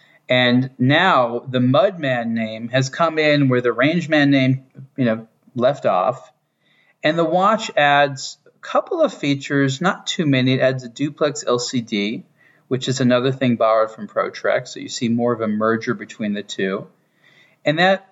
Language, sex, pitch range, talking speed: English, male, 120-150 Hz, 170 wpm